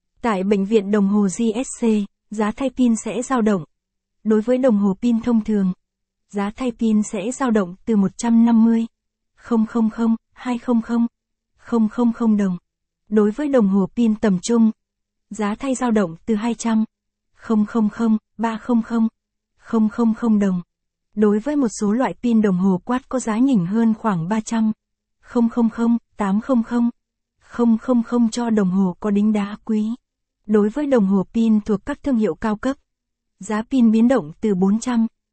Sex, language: female, Vietnamese